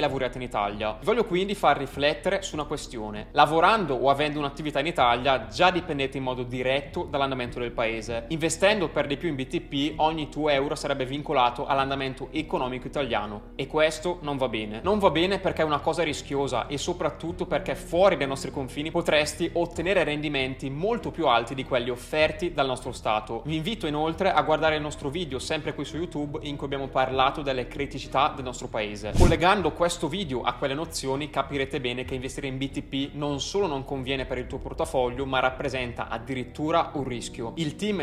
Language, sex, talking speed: Italian, male, 190 wpm